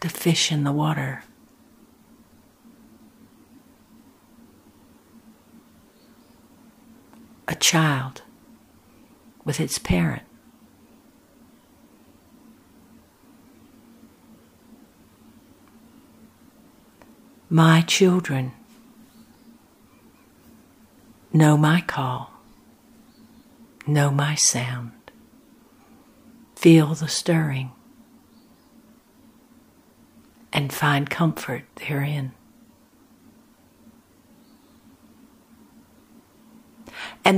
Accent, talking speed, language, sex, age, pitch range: American, 40 wpm, English, female, 60-79, 165-250 Hz